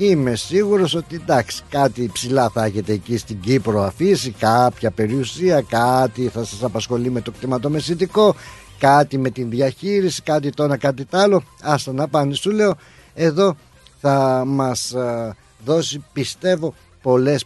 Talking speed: 145 wpm